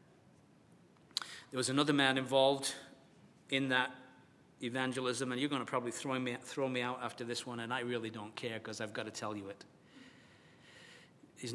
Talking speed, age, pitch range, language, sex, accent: 170 wpm, 40-59, 130-155 Hz, English, male, British